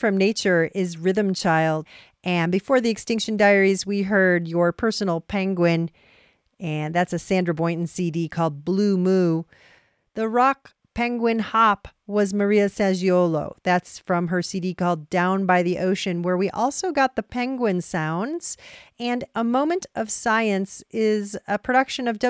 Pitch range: 180-240 Hz